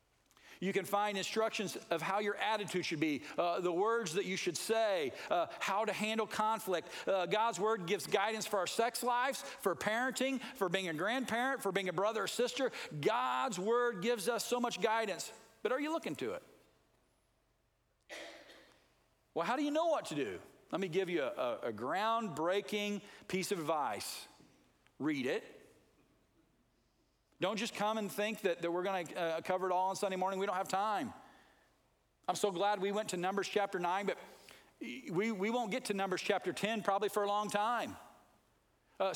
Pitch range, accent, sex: 185-230 Hz, American, male